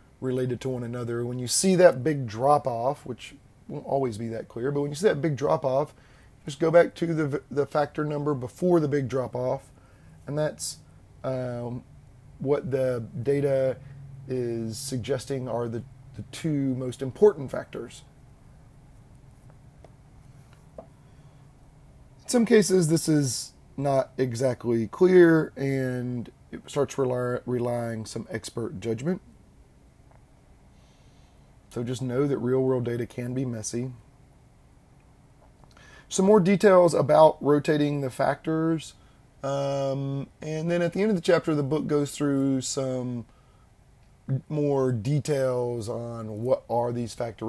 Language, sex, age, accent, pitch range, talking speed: English, male, 30-49, American, 120-140 Hz, 135 wpm